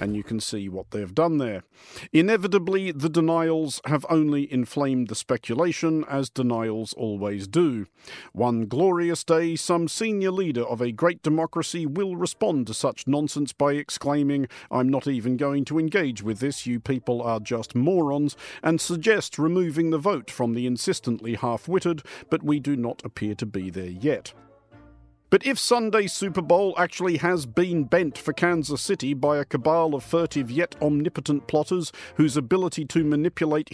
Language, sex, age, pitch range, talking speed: English, male, 50-69, 115-165 Hz, 165 wpm